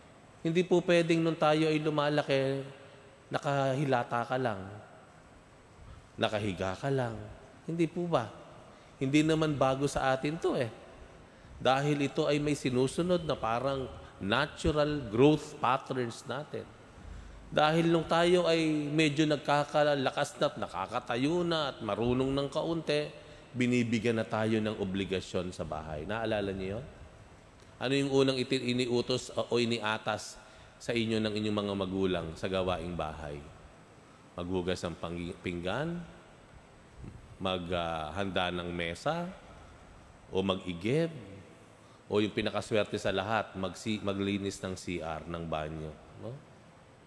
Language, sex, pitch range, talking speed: Filipino, male, 95-150 Hz, 120 wpm